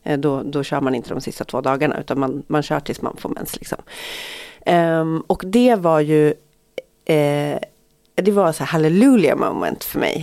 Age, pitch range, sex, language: 30-49, 145-195 Hz, female, Swedish